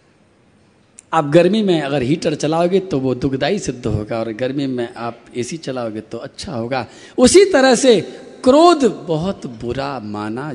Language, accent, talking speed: Hindi, native, 155 wpm